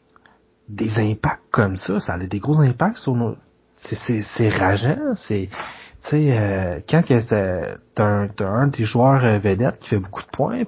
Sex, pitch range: male, 105-135 Hz